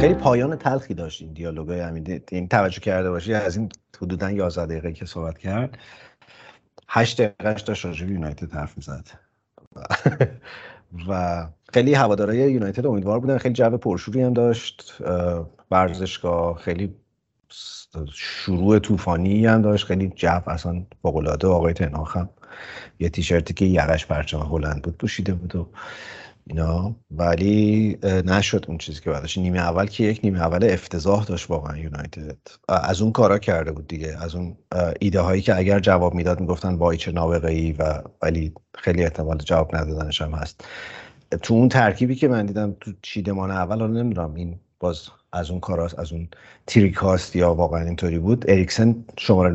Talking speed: 155 wpm